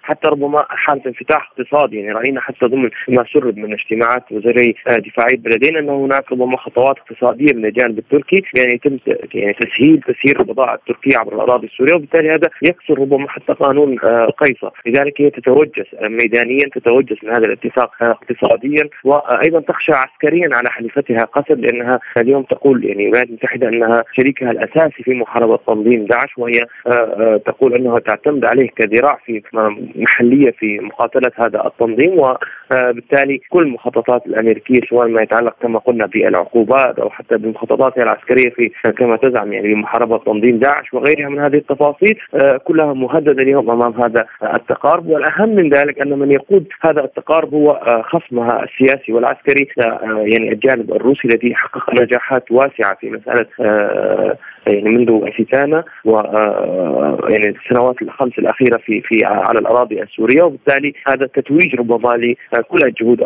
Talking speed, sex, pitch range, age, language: 145 wpm, male, 115-140 Hz, 30-49, Arabic